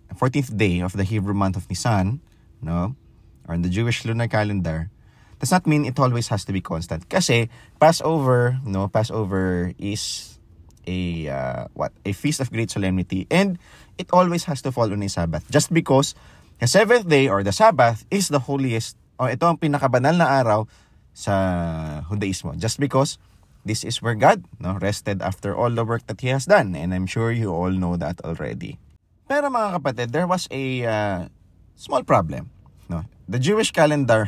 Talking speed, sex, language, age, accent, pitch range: 190 wpm, male, English, 20-39, Filipino, 95-140 Hz